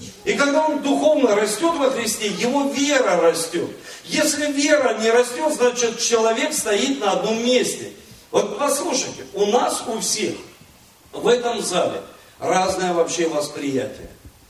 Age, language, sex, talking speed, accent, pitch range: 40-59, Russian, male, 135 wpm, native, 220-270 Hz